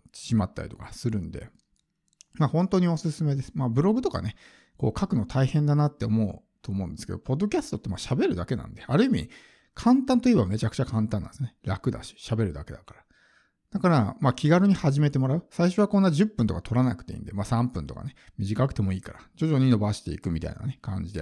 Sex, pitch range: male, 105-140 Hz